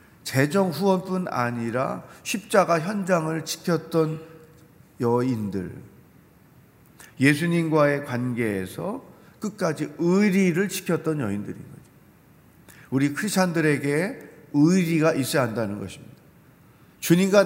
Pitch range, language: 135-165 Hz, Korean